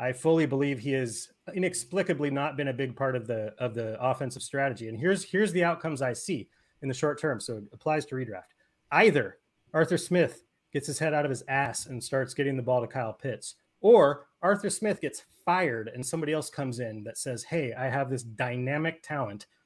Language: English